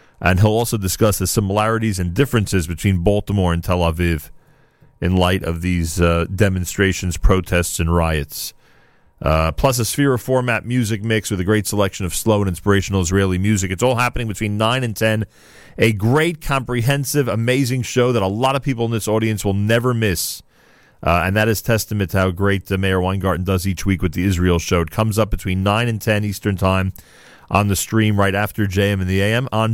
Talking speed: 200 wpm